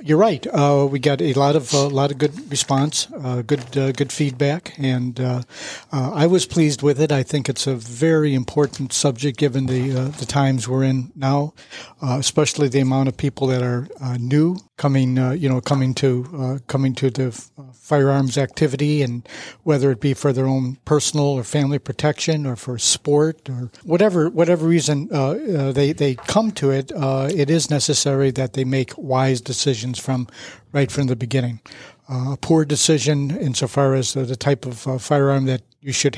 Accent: American